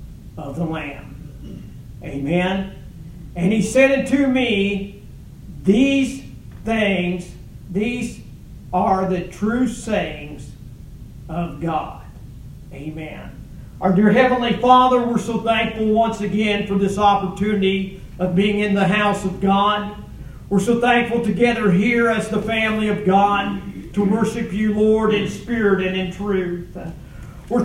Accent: American